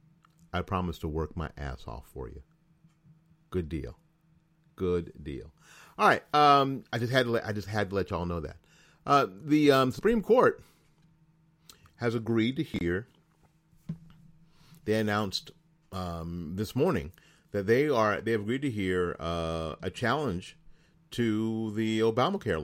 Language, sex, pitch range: English, male, 105-160 Hz